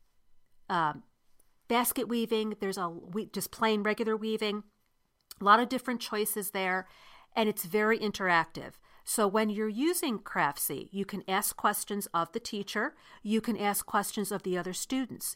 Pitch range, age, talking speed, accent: 180-220 Hz, 40-59, 155 wpm, American